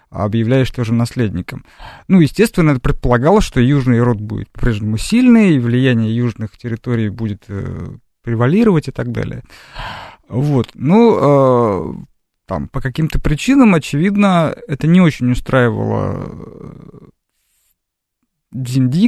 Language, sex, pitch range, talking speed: Russian, male, 120-150 Hz, 115 wpm